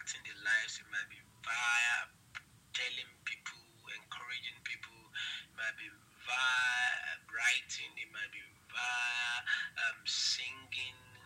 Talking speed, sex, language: 115 wpm, male, English